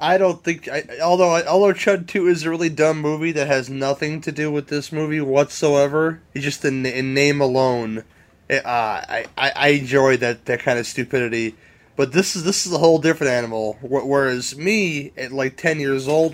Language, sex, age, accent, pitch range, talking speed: English, male, 30-49, American, 120-150 Hz, 200 wpm